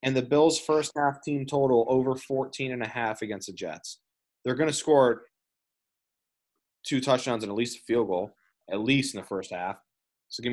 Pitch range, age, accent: 110-130 Hz, 20-39, American